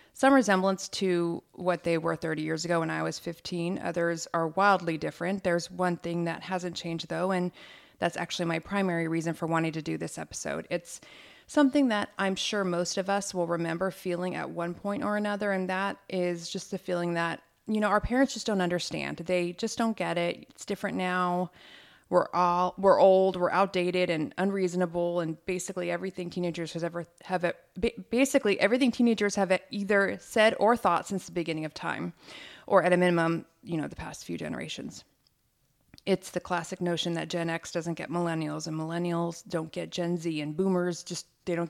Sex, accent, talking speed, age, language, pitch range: female, American, 195 wpm, 20-39, English, 170-195 Hz